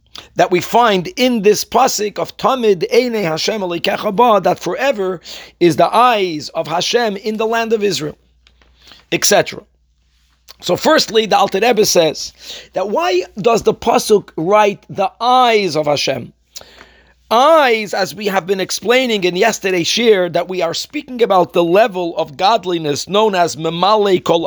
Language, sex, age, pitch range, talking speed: English, male, 40-59, 180-235 Hz, 150 wpm